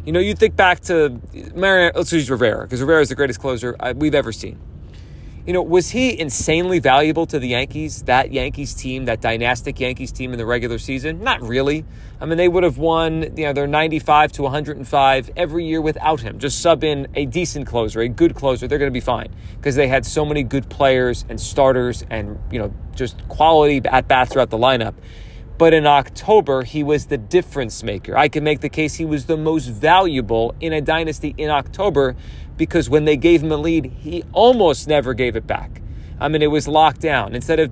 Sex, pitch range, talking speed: male, 120-160 Hz, 210 wpm